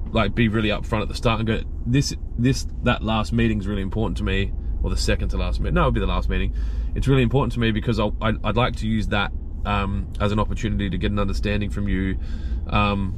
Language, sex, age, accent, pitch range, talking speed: English, male, 20-39, Australian, 90-110 Hz, 250 wpm